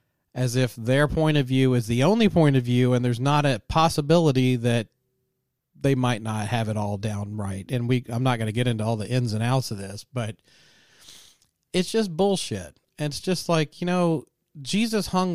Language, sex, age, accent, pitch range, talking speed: English, male, 40-59, American, 115-155 Hz, 205 wpm